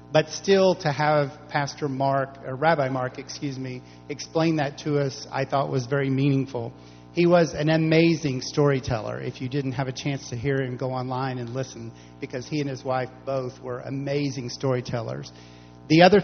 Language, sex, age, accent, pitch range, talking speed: English, male, 50-69, American, 130-155 Hz, 175 wpm